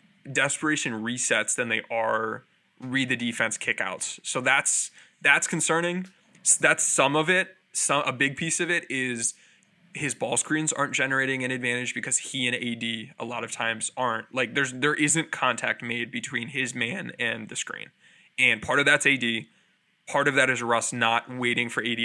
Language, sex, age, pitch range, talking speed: English, male, 20-39, 120-150 Hz, 180 wpm